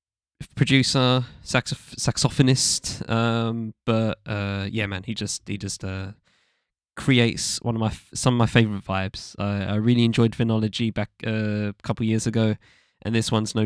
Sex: male